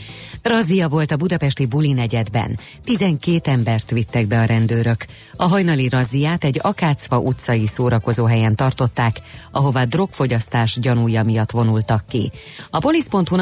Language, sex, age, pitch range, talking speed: Hungarian, female, 30-49, 115-160 Hz, 130 wpm